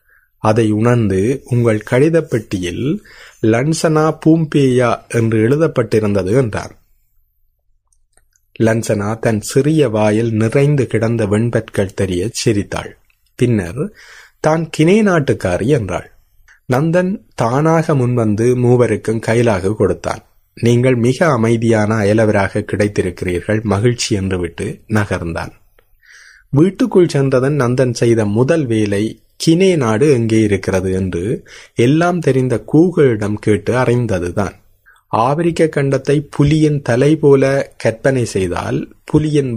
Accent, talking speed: native, 90 wpm